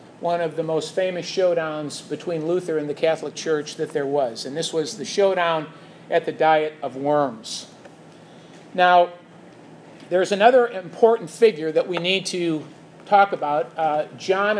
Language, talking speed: English, 155 wpm